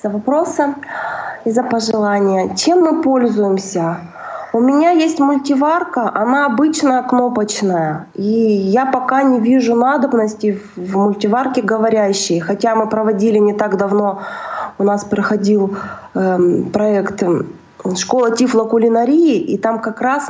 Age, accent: 20-39, native